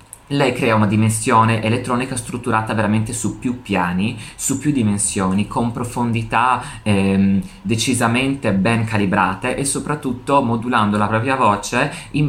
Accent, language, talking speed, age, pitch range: native, Italian, 125 wpm, 20-39, 100-125 Hz